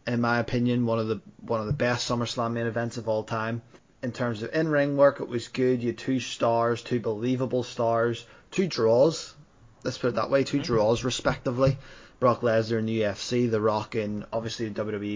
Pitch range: 110-120 Hz